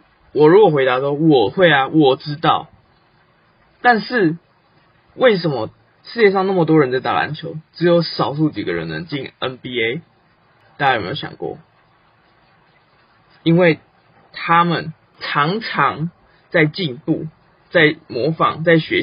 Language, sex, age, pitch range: Chinese, male, 20-39, 140-175 Hz